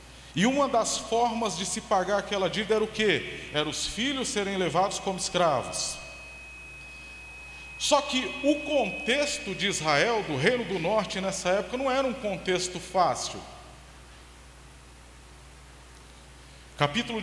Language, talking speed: Portuguese, 130 wpm